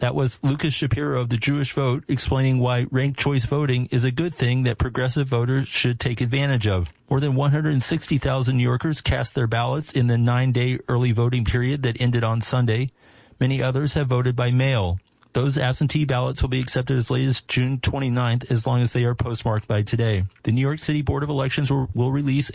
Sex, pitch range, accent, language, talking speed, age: male, 120-135 Hz, American, English, 200 wpm, 40-59